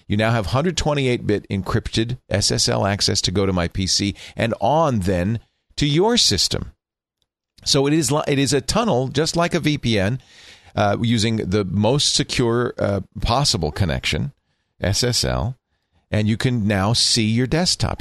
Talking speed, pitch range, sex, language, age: 150 wpm, 90-120 Hz, male, English, 40-59